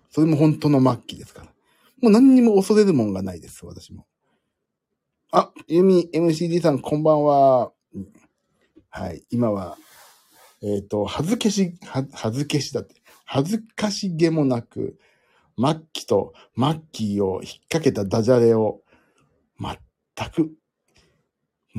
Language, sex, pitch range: Japanese, male, 105-165 Hz